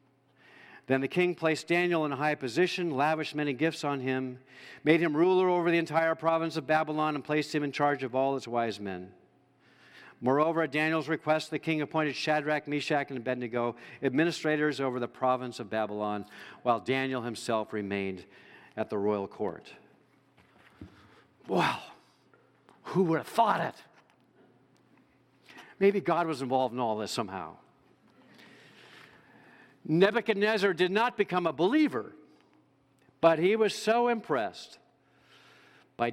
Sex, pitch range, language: male, 130-180 Hz, English